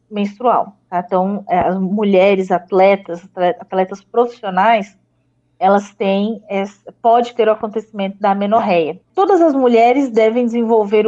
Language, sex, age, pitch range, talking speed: Portuguese, female, 20-39, 210-270 Hz, 120 wpm